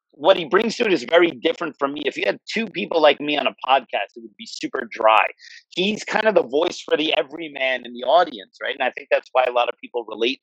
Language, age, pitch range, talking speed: English, 40-59, 135-175 Hz, 270 wpm